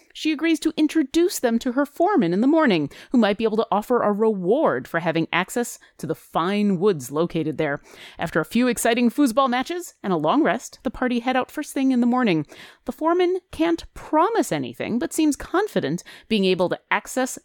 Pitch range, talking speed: 175-265 Hz, 205 wpm